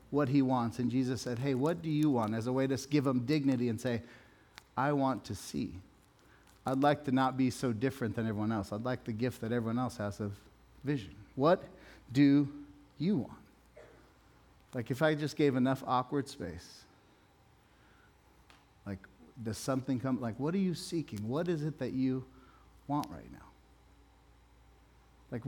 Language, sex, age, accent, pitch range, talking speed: English, male, 40-59, American, 115-145 Hz, 175 wpm